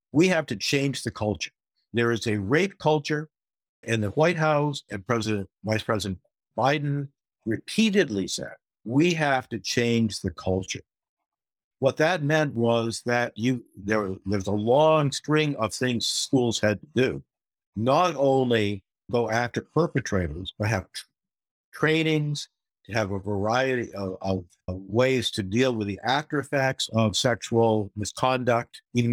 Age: 60-79